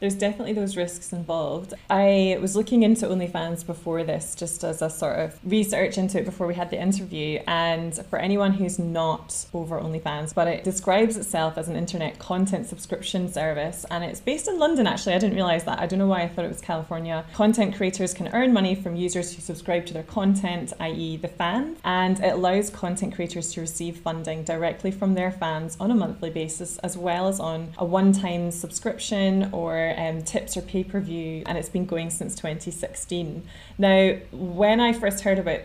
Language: English